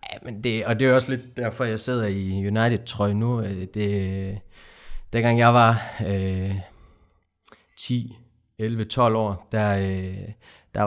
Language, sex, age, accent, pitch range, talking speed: Danish, male, 20-39, native, 95-115 Hz, 150 wpm